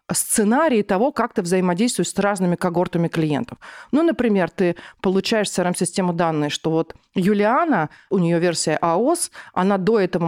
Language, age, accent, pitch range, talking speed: Russian, 40-59, native, 170-225 Hz, 160 wpm